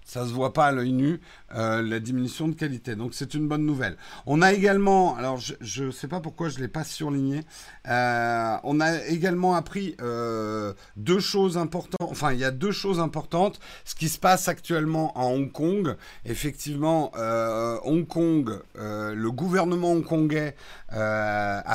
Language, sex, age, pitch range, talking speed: French, male, 50-69, 120-165 Hz, 180 wpm